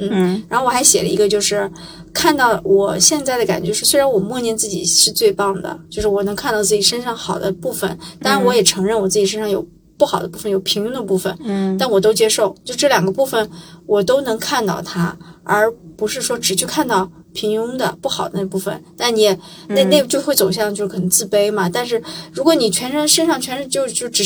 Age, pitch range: 20-39, 185-230 Hz